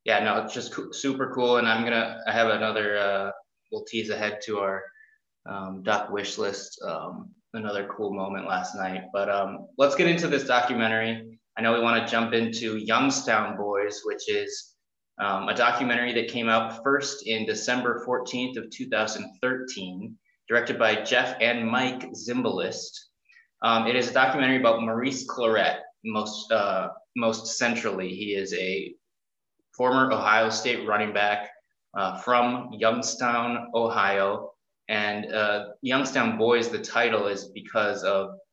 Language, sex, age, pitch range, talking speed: English, male, 20-39, 105-125 Hz, 150 wpm